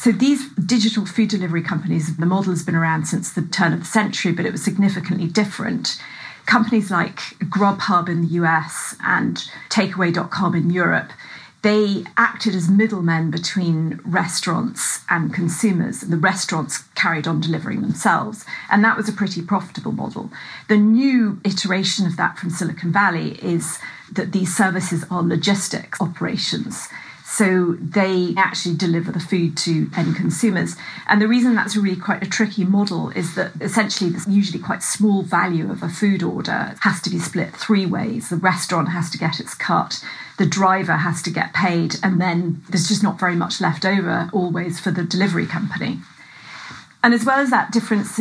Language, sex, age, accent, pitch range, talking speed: English, female, 40-59, British, 170-205 Hz, 170 wpm